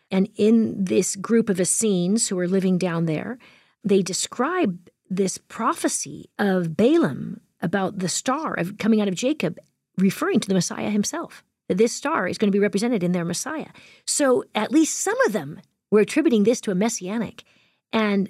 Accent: American